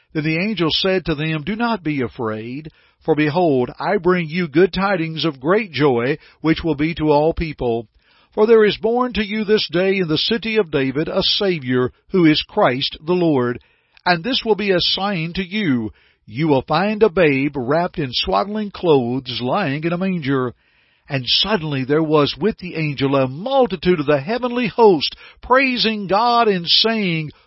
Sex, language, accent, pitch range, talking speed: male, English, American, 135-185 Hz, 185 wpm